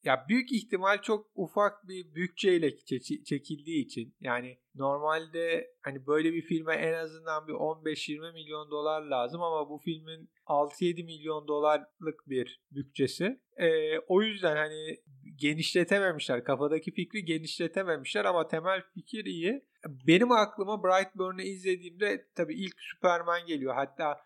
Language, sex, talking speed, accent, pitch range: Turkish, male, 125 wpm, native, 150-195 Hz